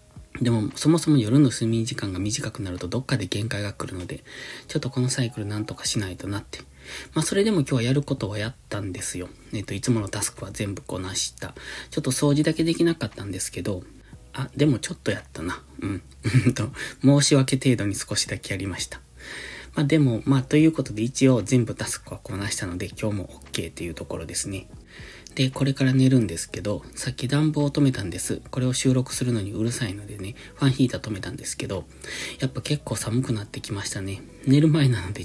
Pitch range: 100-135 Hz